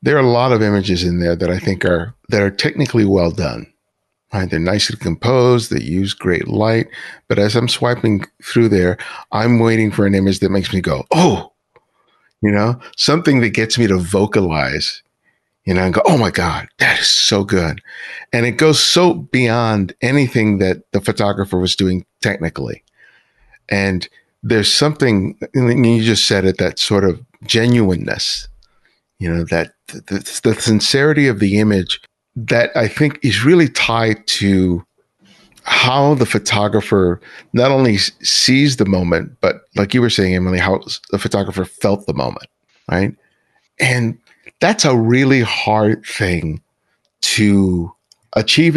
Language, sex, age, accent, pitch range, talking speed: English, male, 50-69, American, 95-125 Hz, 160 wpm